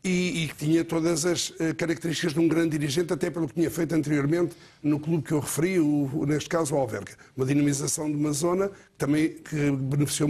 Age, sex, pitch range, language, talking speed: 50-69, male, 160-195 Hz, Portuguese, 220 wpm